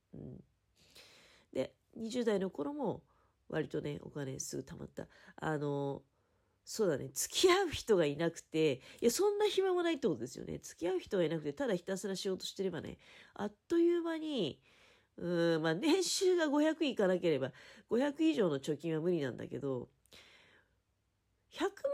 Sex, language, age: female, Japanese, 40-59